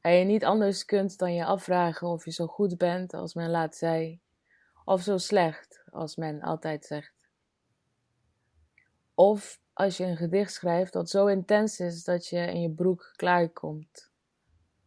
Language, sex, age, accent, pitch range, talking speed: Dutch, female, 20-39, Dutch, 155-185 Hz, 160 wpm